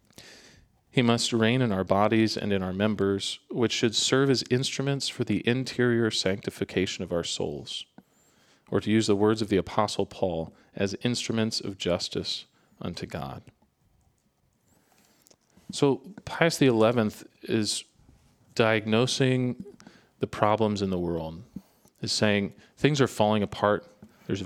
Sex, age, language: male, 40-59, English